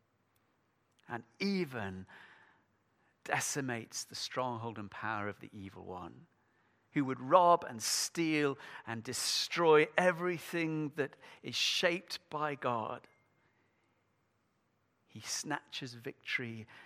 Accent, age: British, 50-69